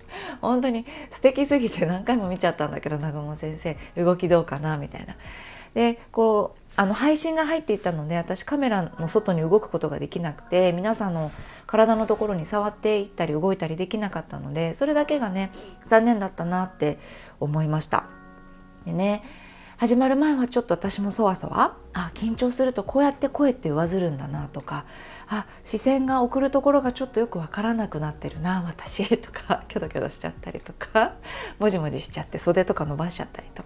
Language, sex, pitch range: Japanese, female, 155-230 Hz